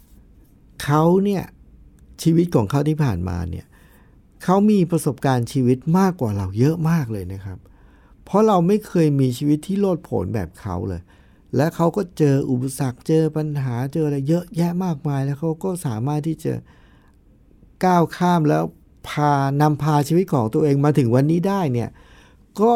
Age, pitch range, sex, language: 60-79, 110-170 Hz, male, Thai